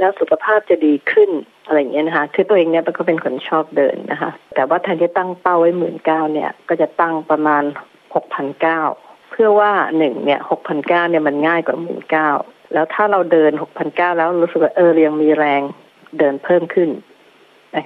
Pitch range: 155-185 Hz